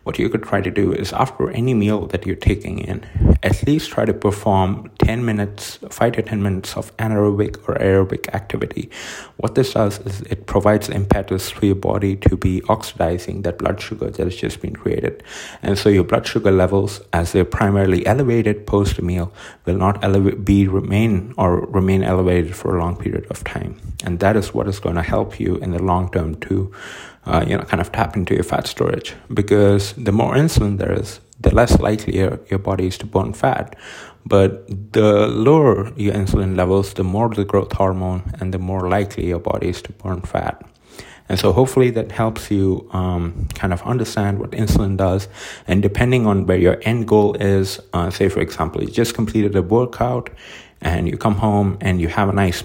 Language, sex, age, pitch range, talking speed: English, male, 30-49, 95-105 Hz, 200 wpm